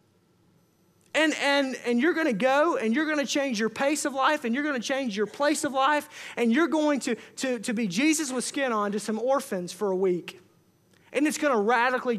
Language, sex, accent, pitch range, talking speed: English, male, American, 240-320 Hz, 230 wpm